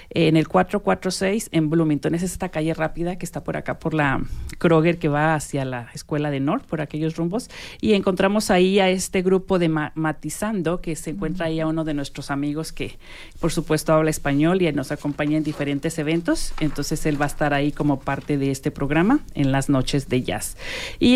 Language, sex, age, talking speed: Spanish, female, 40-59, 200 wpm